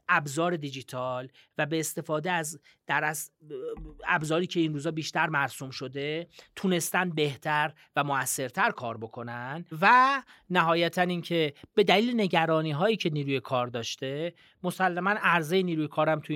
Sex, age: male, 30-49